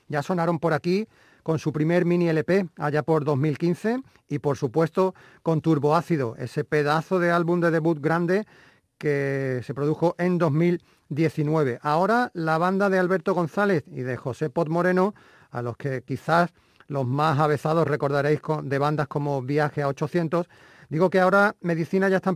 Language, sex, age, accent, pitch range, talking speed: Spanish, male, 40-59, Spanish, 150-190 Hz, 160 wpm